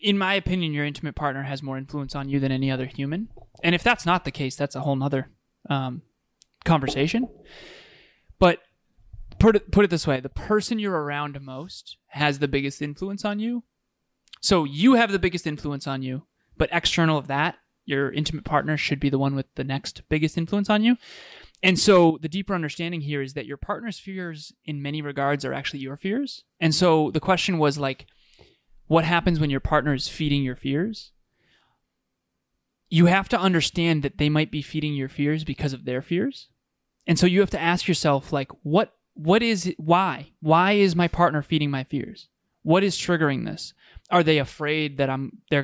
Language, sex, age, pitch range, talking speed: English, male, 20-39, 140-185 Hz, 195 wpm